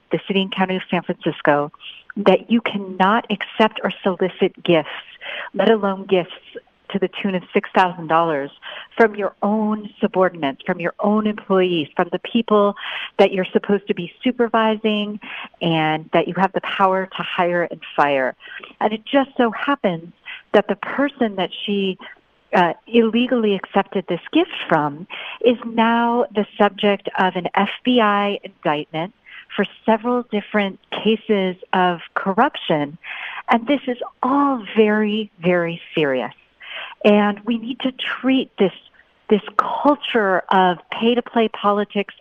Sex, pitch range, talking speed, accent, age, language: female, 185-230 Hz, 140 wpm, American, 40-59, English